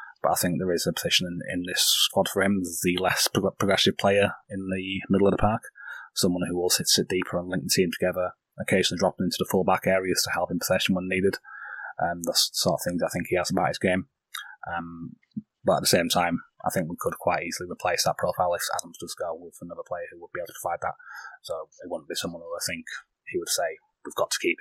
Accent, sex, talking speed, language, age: British, male, 250 wpm, English, 20-39